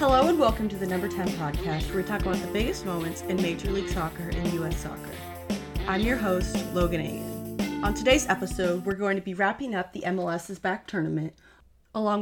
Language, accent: English, American